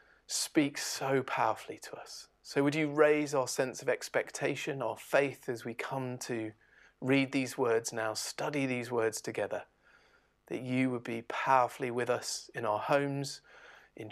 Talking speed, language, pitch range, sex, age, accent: 160 wpm, English, 125-160 Hz, male, 30-49, British